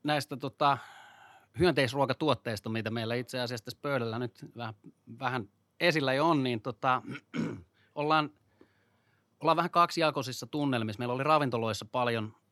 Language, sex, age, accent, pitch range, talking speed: Finnish, male, 30-49, native, 115-140 Hz, 125 wpm